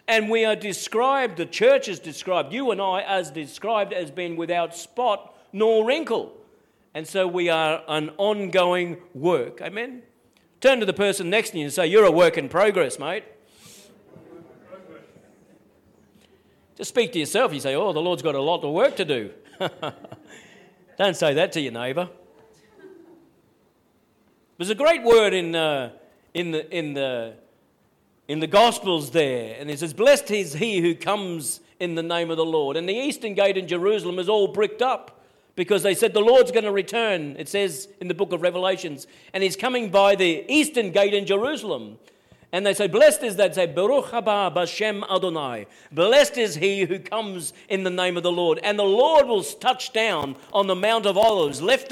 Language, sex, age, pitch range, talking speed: English, male, 50-69, 175-225 Hz, 185 wpm